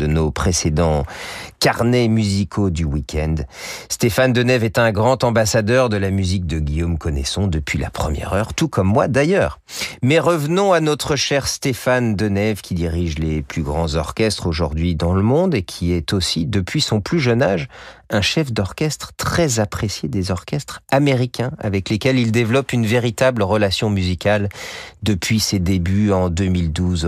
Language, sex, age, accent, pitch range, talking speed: French, male, 40-59, French, 85-120 Hz, 165 wpm